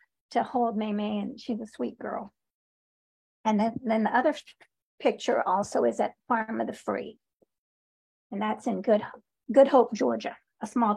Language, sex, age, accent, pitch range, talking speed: English, female, 50-69, American, 220-275 Hz, 175 wpm